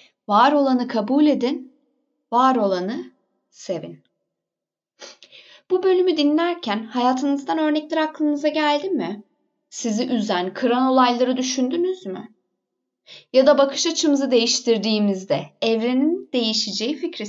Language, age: Turkish, 20-39